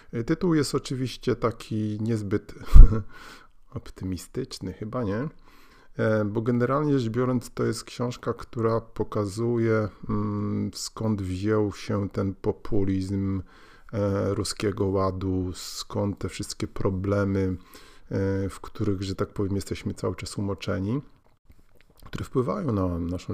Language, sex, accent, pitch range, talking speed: Polish, male, native, 95-120 Hz, 105 wpm